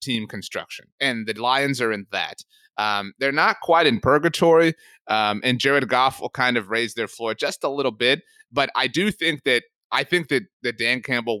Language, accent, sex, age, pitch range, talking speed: English, American, male, 30-49, 130-180 Hz, 205 wpm